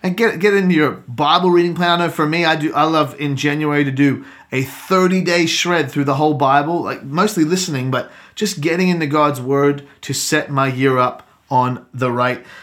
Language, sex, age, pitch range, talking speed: English, male, 30-49, 135-180 Hz, 210 wpm